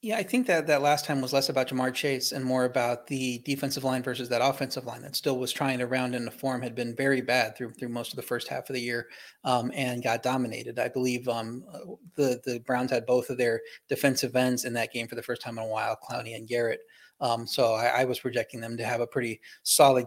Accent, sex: American, male